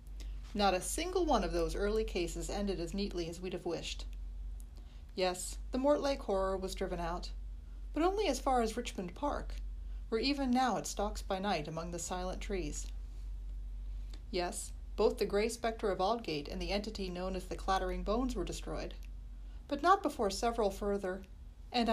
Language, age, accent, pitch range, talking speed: English, 40-59, American, 165-225 Hz, 170 wpm